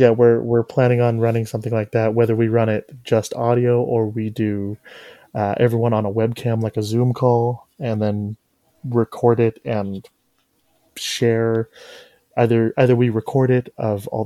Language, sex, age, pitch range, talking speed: English, male, 20-39, 110-140 Hz, 170 wpm